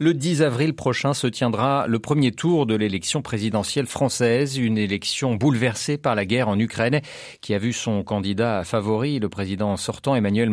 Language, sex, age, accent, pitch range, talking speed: French, male, 40-59, French, 110-150 Hz, 175 wpm